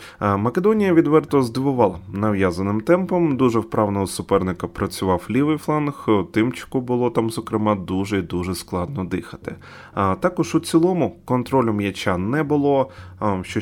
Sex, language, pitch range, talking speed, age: male, Ukrainian, 95-125 Hz, 115 wpm, 20-39